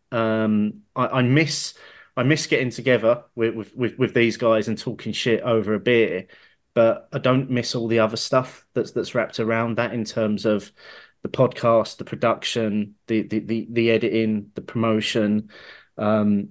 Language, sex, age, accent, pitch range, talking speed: English, male, 30-49, British, 110-135 Hz, 175 wpm